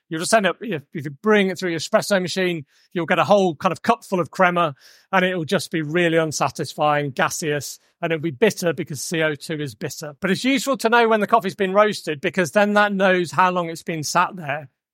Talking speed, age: 235 wpm, 40-59